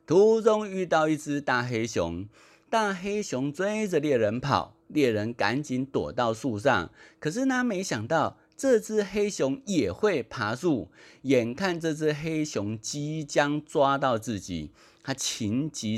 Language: Chinese